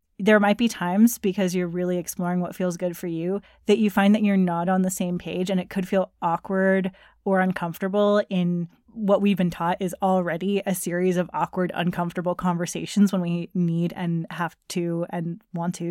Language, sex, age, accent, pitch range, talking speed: English, female, 20-39, American, 175-200 Hz, 195 wpm